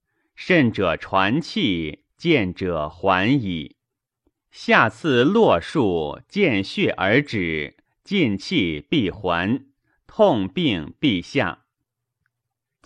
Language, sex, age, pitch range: Chinese, male, 30-49, 105-150 Hz